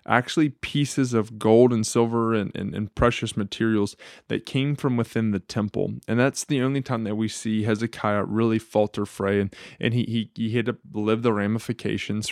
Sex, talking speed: male, 190 wpm